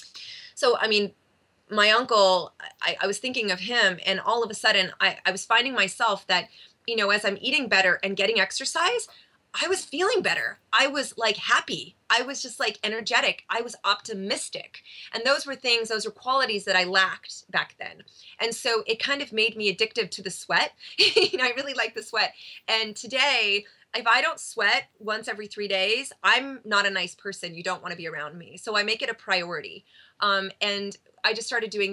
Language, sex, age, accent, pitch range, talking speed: English, female, 30-49, American, 190-240 Hz, 210 wpm